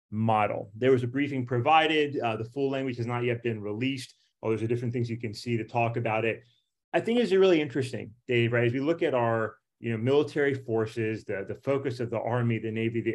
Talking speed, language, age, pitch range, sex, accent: 235 wpm, English, 30-49, 115-140 Hz, male, American